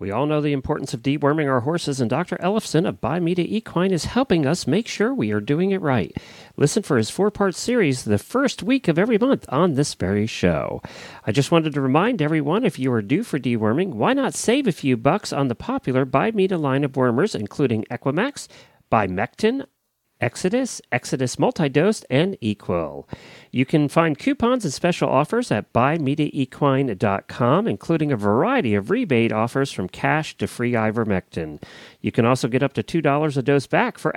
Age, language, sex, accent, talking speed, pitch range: 40-59, English, male, American, 185 wpm, 120-185 Hz